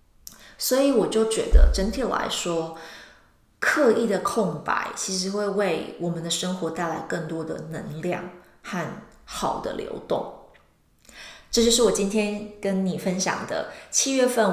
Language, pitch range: Chinese, 165-210 Hz